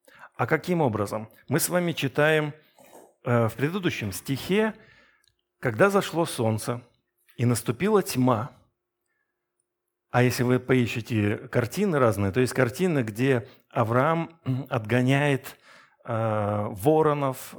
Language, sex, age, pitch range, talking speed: Russian, male, 50-69, 115-150 Hz, 105 wpm